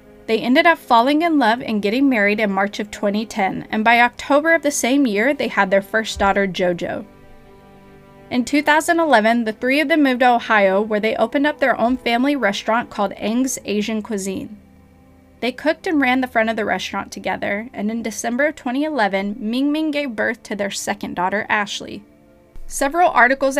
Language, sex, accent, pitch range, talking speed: English, female, American, 200-265 Hz, 185 wpm